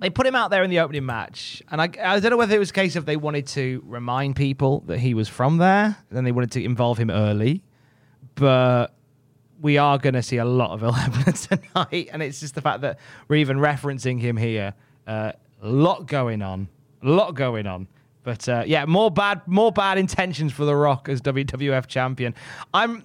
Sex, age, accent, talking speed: male, 20-39, British, 215 wpm